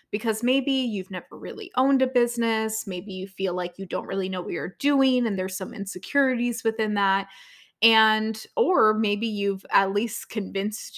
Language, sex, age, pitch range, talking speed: English, female, 20-39, 190-245 Hz, 175 wpm